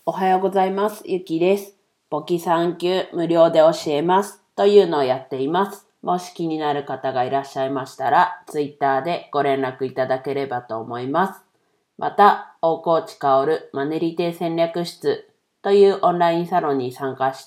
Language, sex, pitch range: Japanese, female, 140-180 Hz